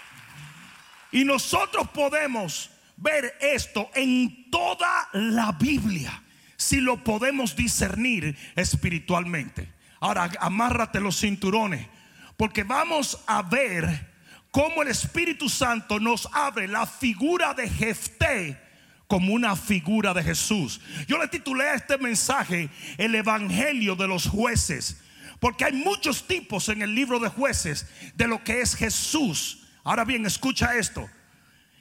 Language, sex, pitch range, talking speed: Spanish, male, 195-265 Hz, 125 wpm